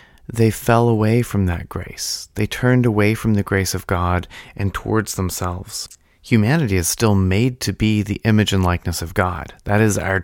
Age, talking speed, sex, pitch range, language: 30-49, 190 wpm, male, 100-120 Hz, English